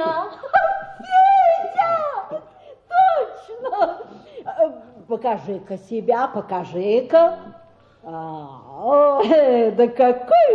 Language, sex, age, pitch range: Russian, female, 50-69, 215-350 Hz